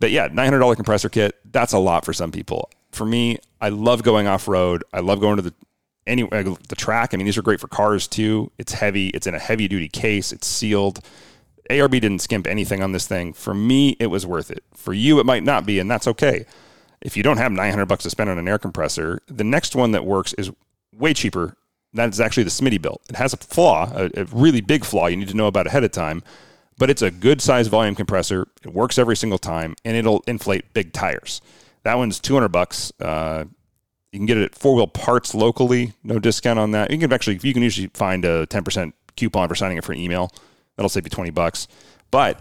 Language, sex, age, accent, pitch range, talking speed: English, male, 30-49, American, 95-115 Hz, 235 wpm